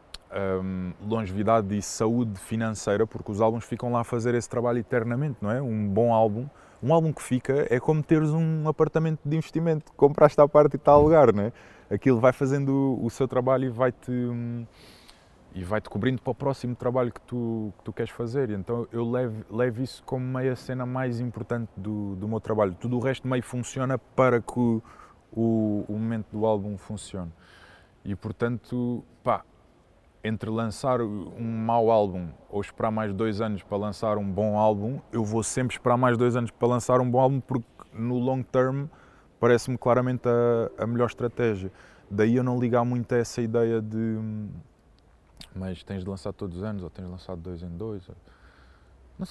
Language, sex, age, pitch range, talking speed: Portuguese, male, 20-39, 105-125 Hz, 185 wpm